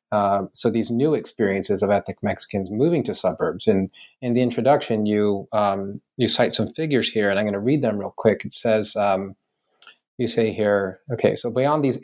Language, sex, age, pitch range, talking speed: English, male, 30-49, 105-130 Hz, 200 wpm